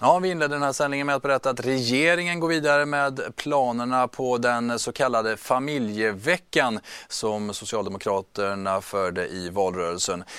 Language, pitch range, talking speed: Swedish, 110-140 Hz, 135 wpm